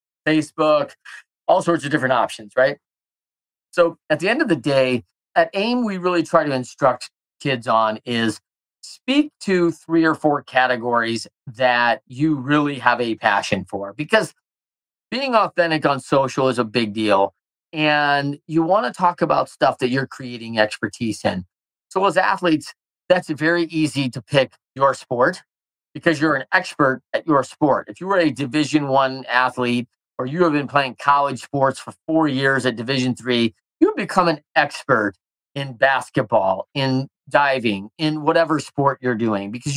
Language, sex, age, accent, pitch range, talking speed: English, male, 40-59, American, 125-165 Hz, 165 wpm